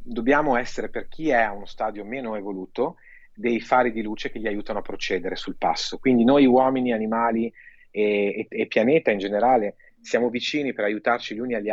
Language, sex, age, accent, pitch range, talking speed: Italian, male, 30-49, native, 105-130 Hz, 190 wpm